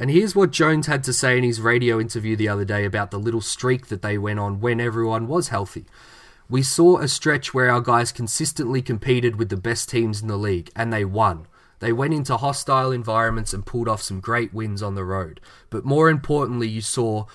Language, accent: English, Australian